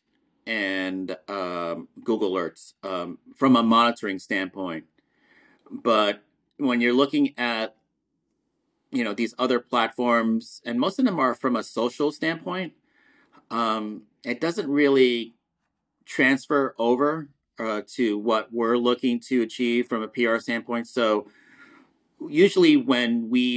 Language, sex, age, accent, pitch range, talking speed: English, male, 40-59, American, 110-130 Hz, 125 wpm